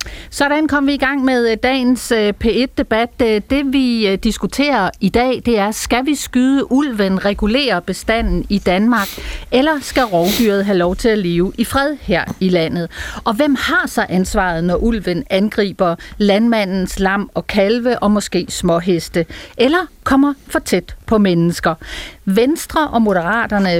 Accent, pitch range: native, 190-255 Hz